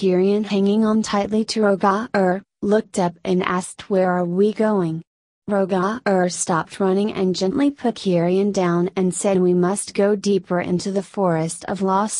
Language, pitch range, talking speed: English, 180-205 Hz, 160 wpm